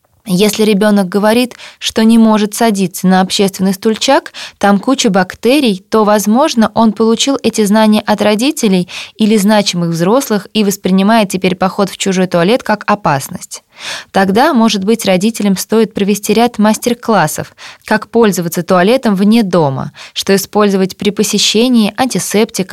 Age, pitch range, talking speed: 20-39, 190-225 Hz, 135 wpm